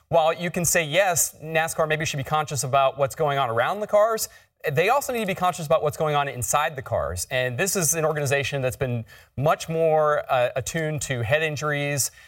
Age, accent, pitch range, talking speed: 30-49, American, 125-155 Hz, 215 wpm